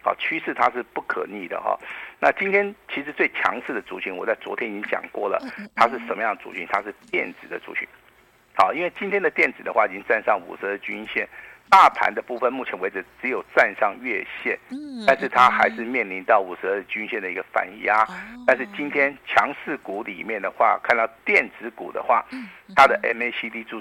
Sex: male